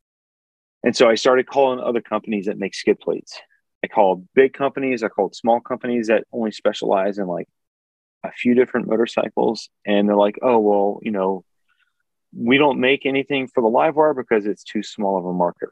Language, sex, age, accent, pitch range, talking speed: English, male, 30-49, American, 100-120 Hz, 190 wpm